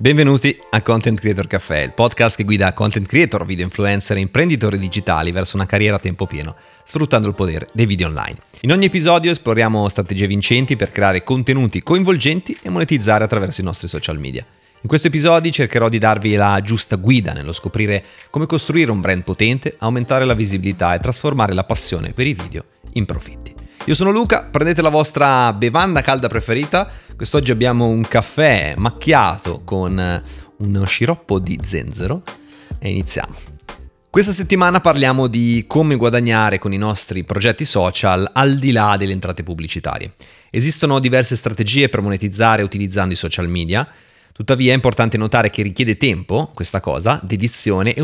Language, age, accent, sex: Italian, 30-49, native, male